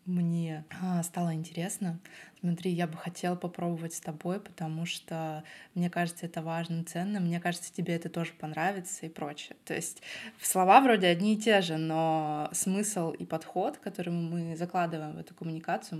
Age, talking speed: 20-39, 165 wpm